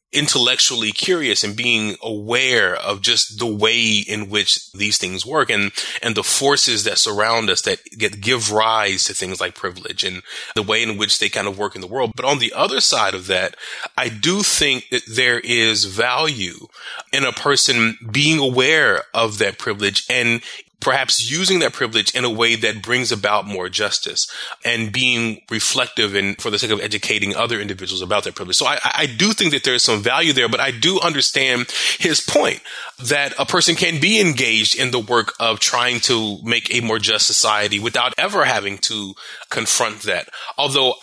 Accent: American